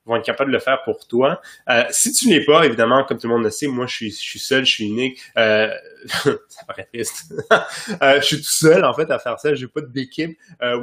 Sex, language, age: male, French, 20-39